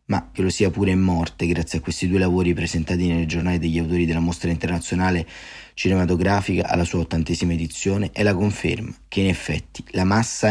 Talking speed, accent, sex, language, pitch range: 190 wpm, native, male, Italian, 85-100 Hz